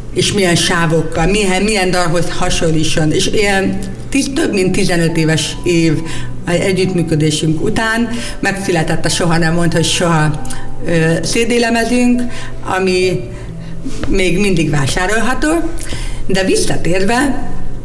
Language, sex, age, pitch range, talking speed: Hungarian, female, 50-69, 155-195 Hz, 110 wpm